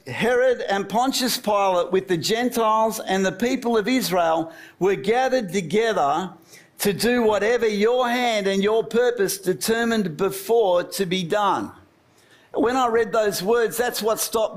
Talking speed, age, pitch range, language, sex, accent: 150 wpm, 50-69, 200-245 Hz, English, male, Australian